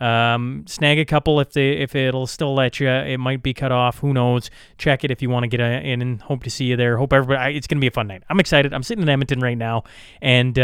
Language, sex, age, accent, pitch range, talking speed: English, male, 30-49, American, 125-150 Hz, 290 wpm